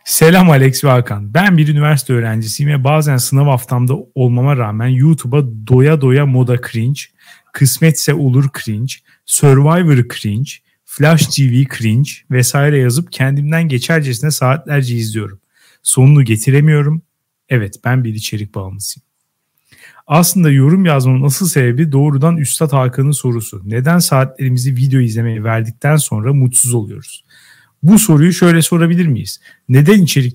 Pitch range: 125-155 Hz